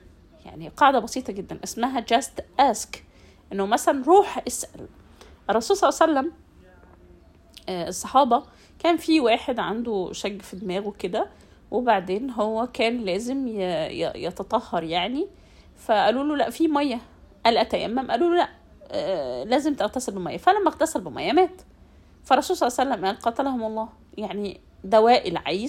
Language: Arabic